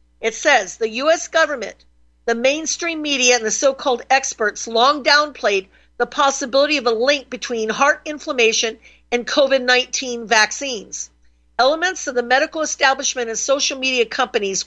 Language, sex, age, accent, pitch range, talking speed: English, female, 50-69, American, 230-280 Hz, 140 wpm